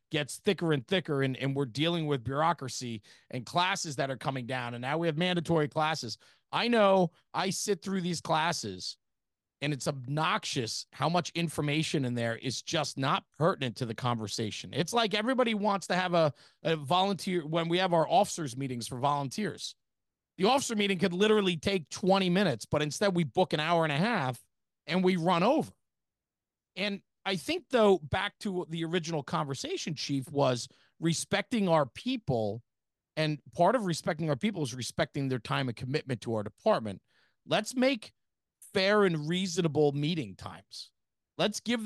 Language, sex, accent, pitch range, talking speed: English, male, American, 135-190 Hz, 170 wpm